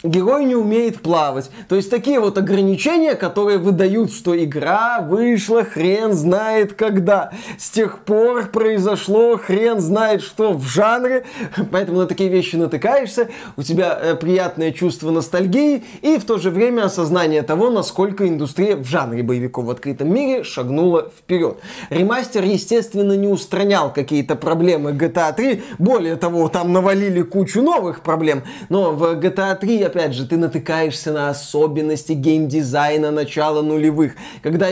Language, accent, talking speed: Russian, native, 145 wpm